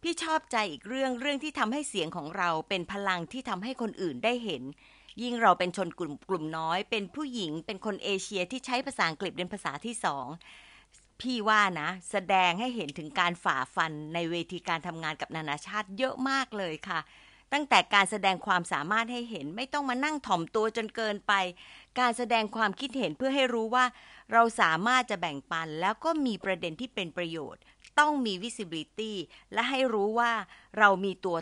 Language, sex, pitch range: Thai, female, 175-240 Hz